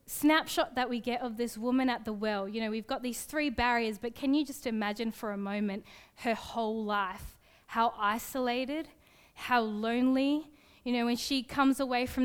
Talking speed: 190 wpm